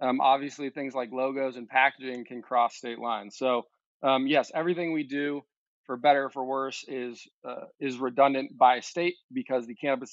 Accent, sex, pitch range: American, male, 120-140 Hz